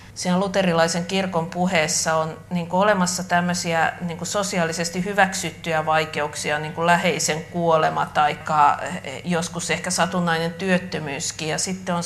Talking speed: 110 wpm